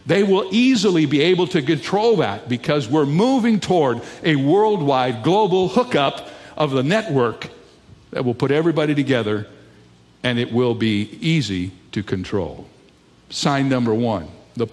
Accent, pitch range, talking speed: American, 125-160 Hz, 145 wpm